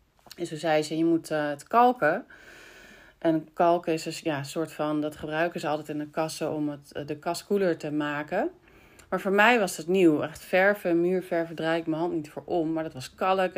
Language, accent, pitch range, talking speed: Dutch, Dutch, 155-190 Hz, 220 wpm